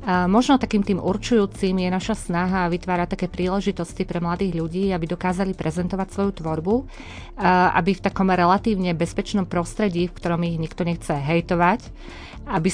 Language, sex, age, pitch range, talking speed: Slovak, female, 30-49, 170-190 Hz, 150 wpm